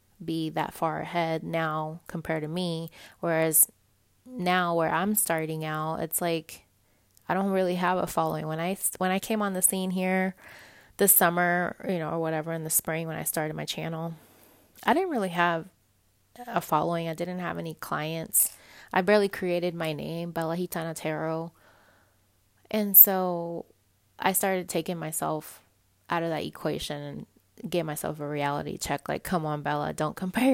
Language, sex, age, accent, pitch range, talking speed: English, female, 20-39, American, 155-180 Hz, 165 wpm